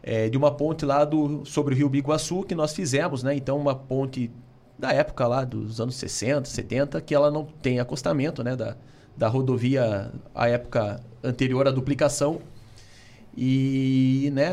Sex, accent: male, Brazilian